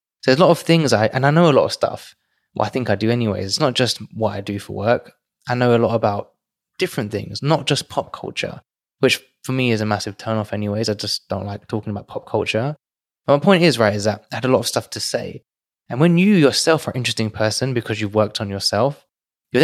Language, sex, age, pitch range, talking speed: English, male, 20-39, 105-130 Hz, 260 wpm